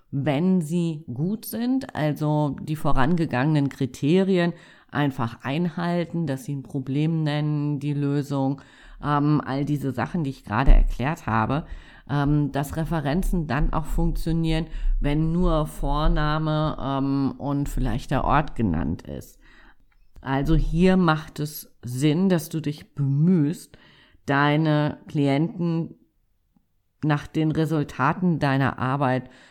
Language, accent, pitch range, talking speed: German, German, 125-160 Hz, 120 wpm